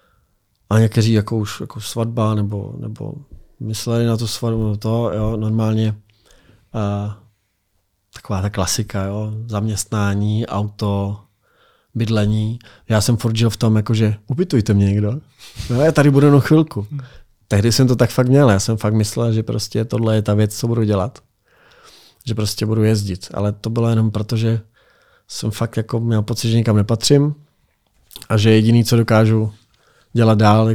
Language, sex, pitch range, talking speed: Czech, male, 100-115 Hz, 160 wpm